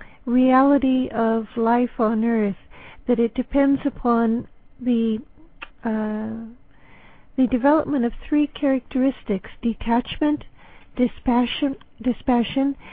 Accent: American